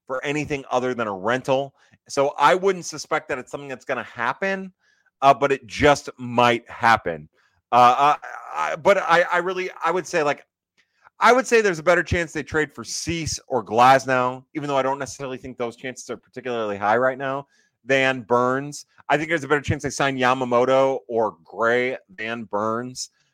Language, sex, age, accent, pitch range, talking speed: English, male, 30-49, American, 120-155 Hz, 195 wpm